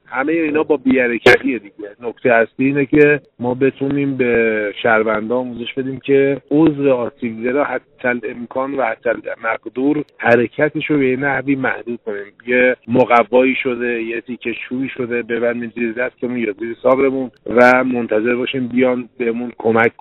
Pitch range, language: 120-145 Hz, Persian